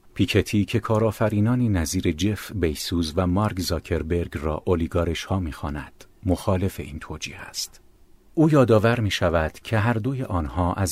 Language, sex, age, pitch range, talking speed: Persian, male, 50-69, 80-105 Hz, 130 wpm